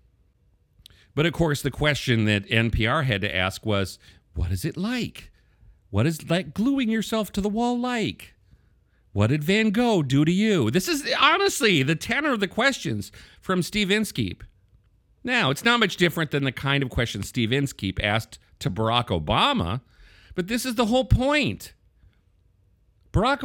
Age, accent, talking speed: 40-59, American, 165 wpm